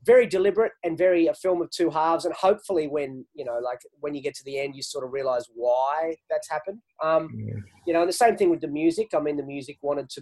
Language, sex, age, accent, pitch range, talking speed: English, male, 20-39, Australian, 150-200 Hz, 255 wpm